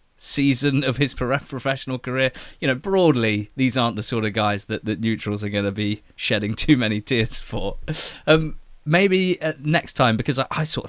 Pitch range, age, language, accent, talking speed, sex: 100-130 Hz, 20-39, English, British, 185 wpm, male